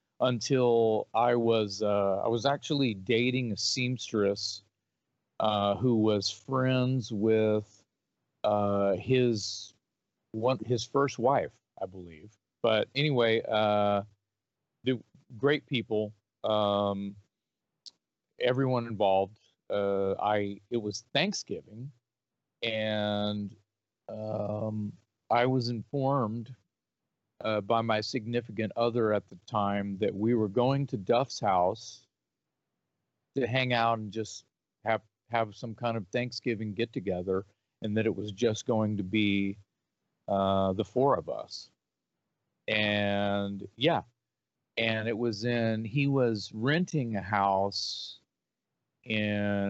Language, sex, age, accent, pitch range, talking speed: English, male, 40-59, American, 100-120 Hz, 115 wpm